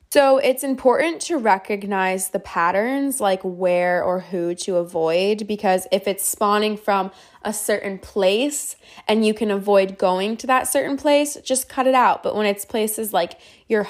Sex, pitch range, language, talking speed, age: female, 190-245 Hz, English, 175 wpm, 20-39